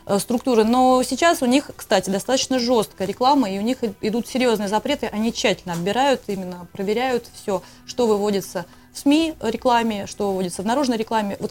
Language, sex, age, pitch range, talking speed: Russian, female, 20-39, 190-245 Hz, 165 wpm